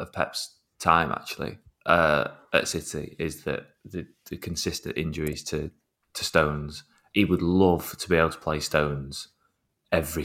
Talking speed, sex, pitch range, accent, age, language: 150 wpm, male, 75-90 Hz, British, 20-39, English